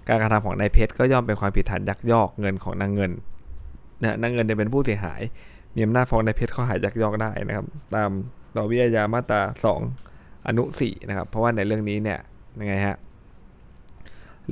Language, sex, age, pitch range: Thai, male, 20-39, 95-110 Hz